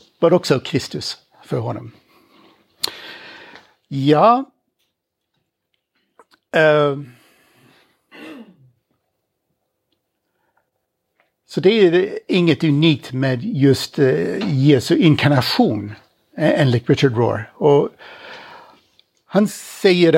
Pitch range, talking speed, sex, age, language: 135-175 Hz, 70 wpm, male, 60-79, Swedish